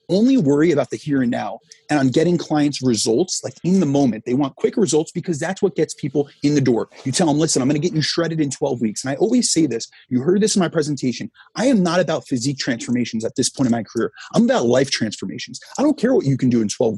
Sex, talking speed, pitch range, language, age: male, 270 wpm, 130-175 Hz, English, 30-49